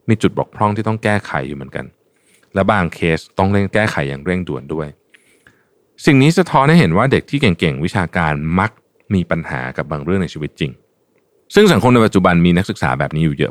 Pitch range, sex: 80-110 Hz, male